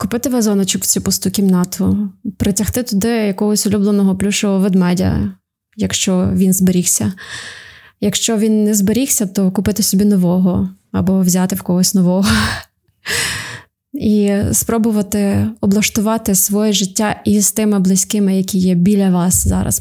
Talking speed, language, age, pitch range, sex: 125 wpm, Ukrainian, 20-39, 185-220 Hz, female